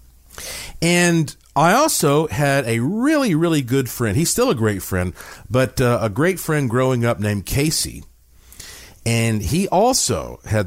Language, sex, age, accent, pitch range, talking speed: English, male, 50-69, American, 100-145 Hz, 150 wpm